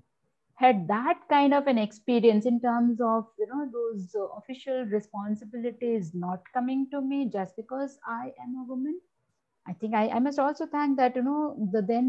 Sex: female